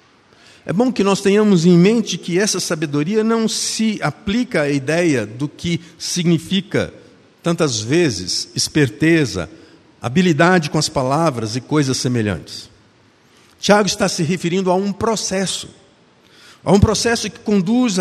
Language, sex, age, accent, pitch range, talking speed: Portuguese, male, 50-69, Brazilian, 150-200 Hz, 135 wpm